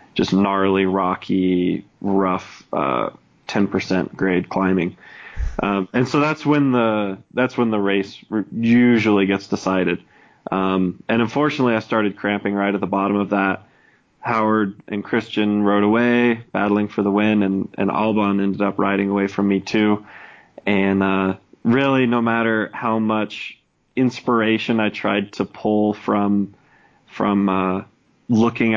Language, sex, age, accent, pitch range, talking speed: English, male, 20-39, American, 100-110 Hz, 145 wpm